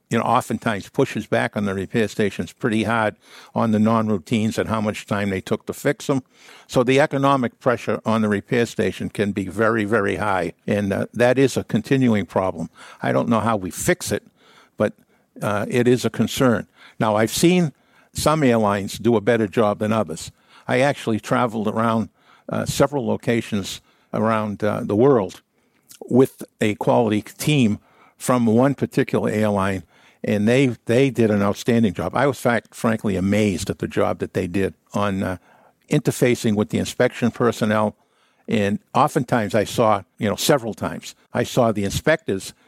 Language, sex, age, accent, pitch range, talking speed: English, male, 60-79, American, 105-125 Hz, 175 wpm